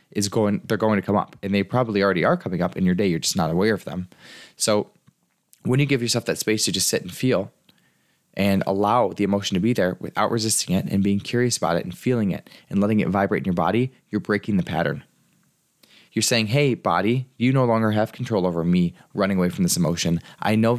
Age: 20-39